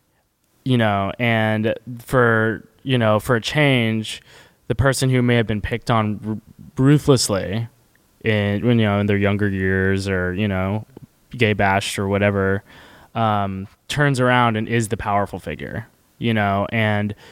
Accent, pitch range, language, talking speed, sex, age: American, 100-115 Hz, English, 150 wpm, male, 20-39